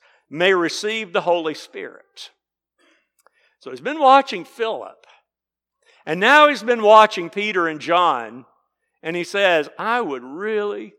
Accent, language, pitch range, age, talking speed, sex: American, English, 165-240 Hz, 60-79, 130 wpm, male